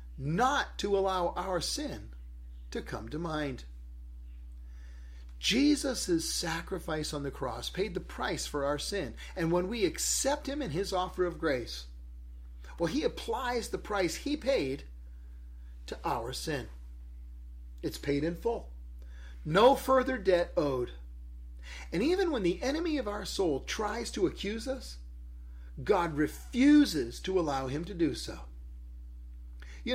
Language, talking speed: English, 140 wpm